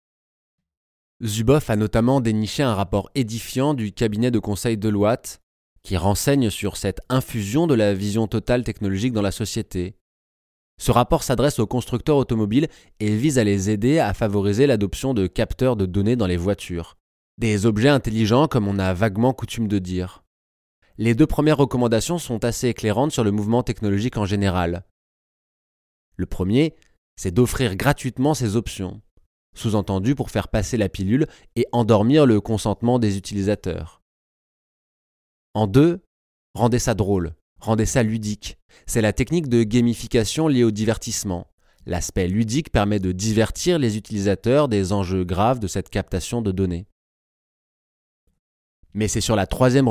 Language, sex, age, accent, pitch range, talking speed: French, male, 20-39, French, 95-120 Hz, 150 wpm